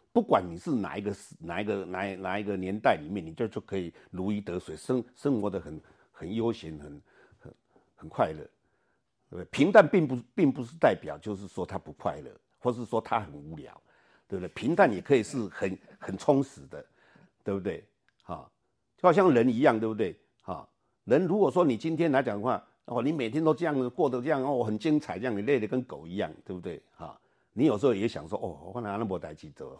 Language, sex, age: Chinese, male, 60-79